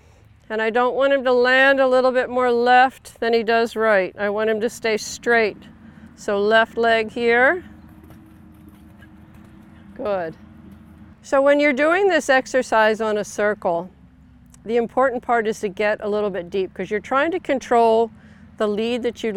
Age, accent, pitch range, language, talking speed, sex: 50-69, American, 195-240 Hz, English, 170 wpm, female